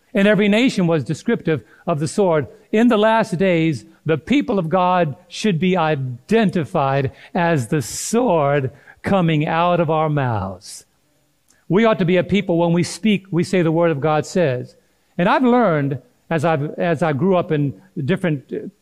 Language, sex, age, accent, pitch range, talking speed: English, male, 50-69, American, 155-195 Hz, 170 wpm